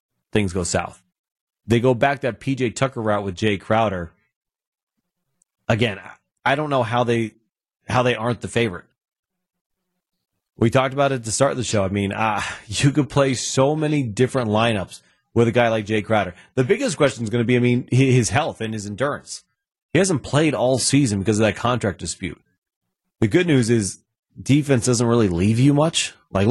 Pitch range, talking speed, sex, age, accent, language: 100-130 Hz, 190 wpm, male, 30-49, American, English